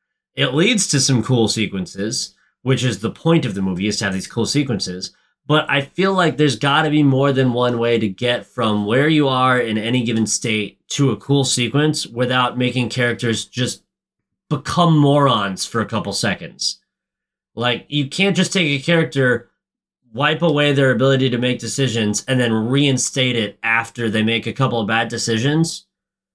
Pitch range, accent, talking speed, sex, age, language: 125-170 Hz, American, 185 wpm, male, 30-49, English